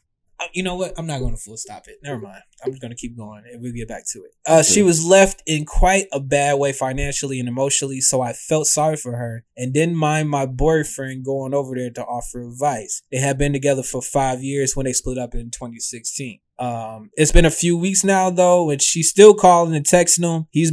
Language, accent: English, American